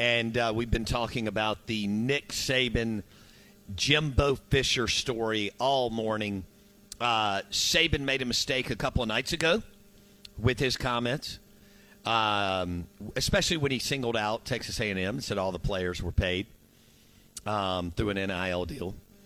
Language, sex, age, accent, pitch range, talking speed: English, male, 50-69, American, 100-120 Hz, 145 wpm